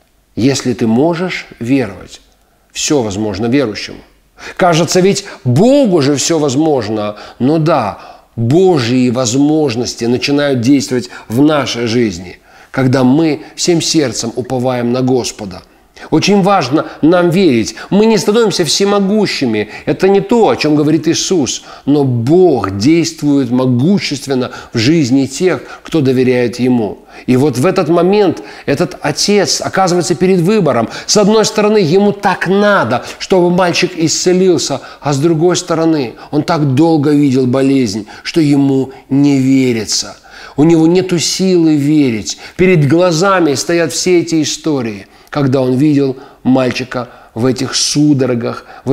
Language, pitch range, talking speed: Russian, 125-175 Hz, 130 wpm